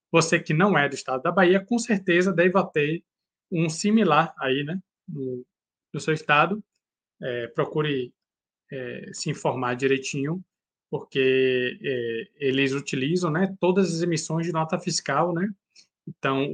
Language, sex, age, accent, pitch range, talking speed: Portuguese, male, 20-39, Brazilian, 130-175 Hz, 125 wpm